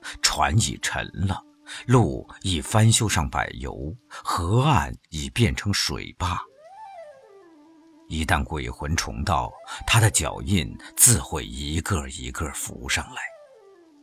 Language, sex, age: Chinese, male, 50-69